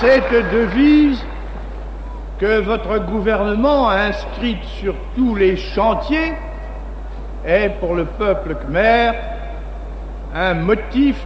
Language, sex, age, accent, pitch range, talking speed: French, male, 60-79, French, 195-260 Hz, 95 wpm